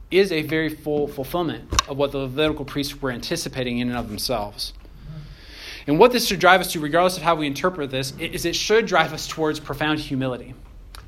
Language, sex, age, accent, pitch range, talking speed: English, male, 30-49, American, 120-170 Hz, 200 wpm